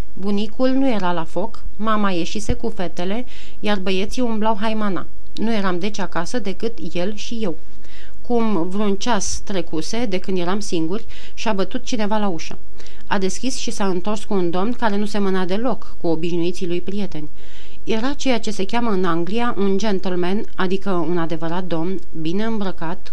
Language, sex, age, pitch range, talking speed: Romanian, female, 30-49, 180-220 Hz, 170 wpm